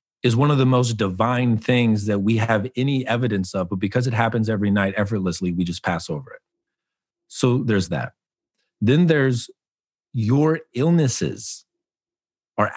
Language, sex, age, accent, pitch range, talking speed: English, male, 40-59, American, 100-120 Hz, 155 wpm